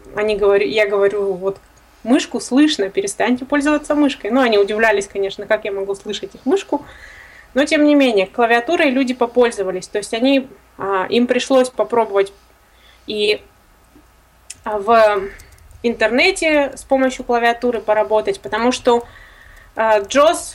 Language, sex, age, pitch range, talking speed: Russian, female, 20-39, 205-270 Hz, 125 wpm